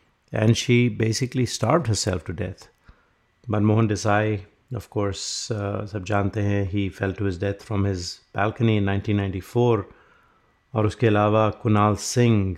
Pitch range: 100-115 Hz